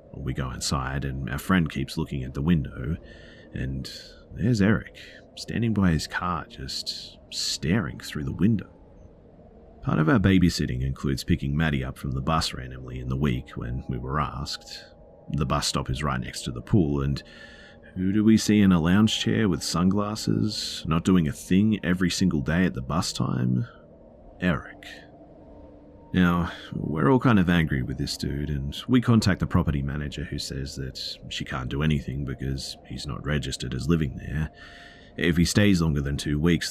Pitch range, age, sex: 65-85 Hz, 40-59, male